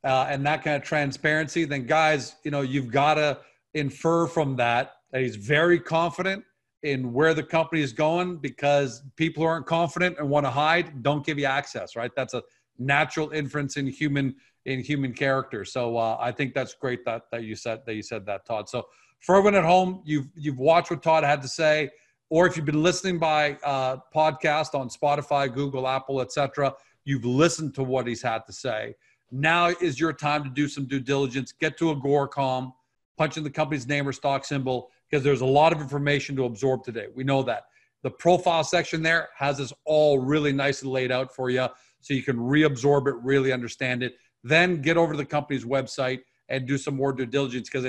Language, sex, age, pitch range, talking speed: English, male, 40-59, 130-155 Hz, 210 wpm